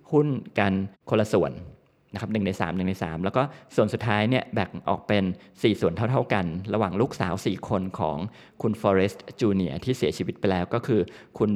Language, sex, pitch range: Thai, male, 100-130 Hz